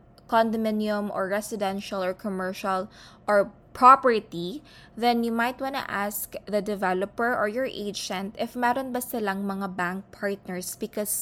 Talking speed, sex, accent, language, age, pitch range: 145 wpm, female, native, Filipino, 20-39, 195-240 Hz